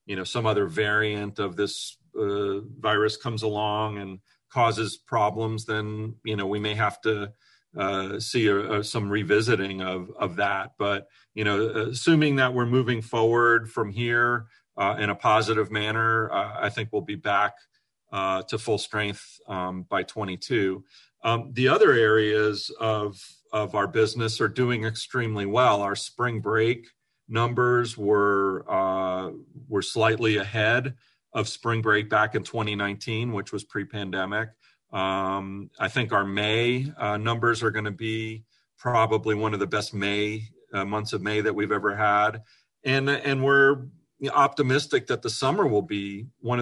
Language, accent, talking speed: English, American, 160 wpm